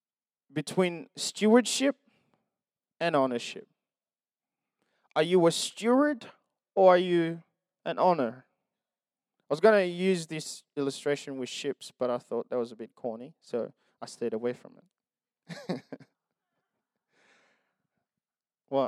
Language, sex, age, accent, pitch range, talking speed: English, male, 20-39, Australian, 155-215 Hz, 120 wpm